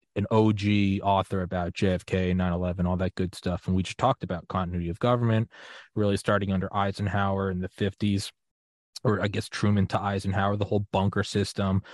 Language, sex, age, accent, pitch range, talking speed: English, male, 20-39, American, 95-120 Hz, 175 wpm